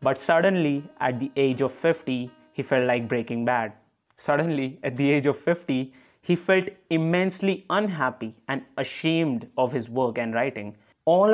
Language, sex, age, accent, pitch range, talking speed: English, male, 20-39, Indian, 135-160 Hz, 160 wpm